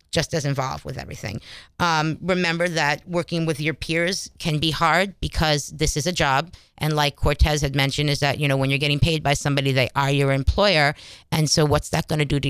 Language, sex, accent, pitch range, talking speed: English, female, American, 140-165 Hz, 220 wpm